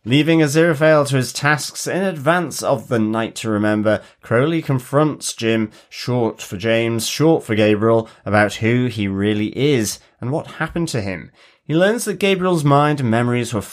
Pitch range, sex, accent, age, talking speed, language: 105-140 Hz, male, British, 30-49, 170 wpm, English